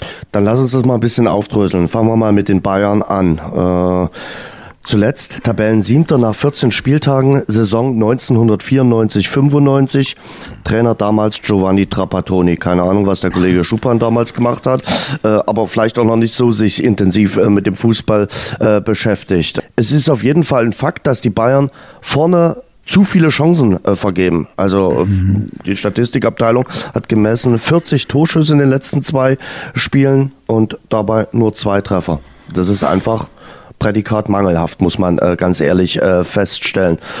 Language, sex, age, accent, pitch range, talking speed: German, male, 40-59, German, 100-135 Hz, 155 wpm